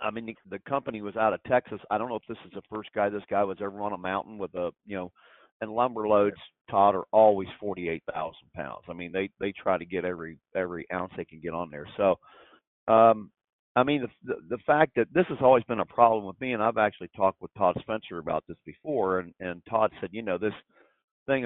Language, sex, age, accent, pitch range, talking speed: English, male, 50-69, American, 95-115 Hz, 245 wpm